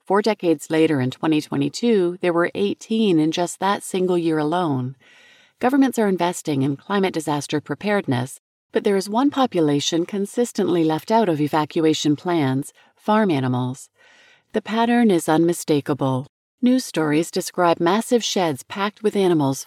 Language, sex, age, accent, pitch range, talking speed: English, female, 40-59, American, 150-210 Hz, 135 wpm